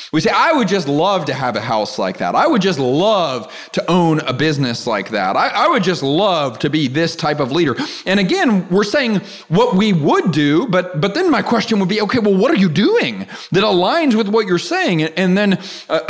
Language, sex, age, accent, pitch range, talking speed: English, male, 30-49, American, 135-185 Hz, 235 wpm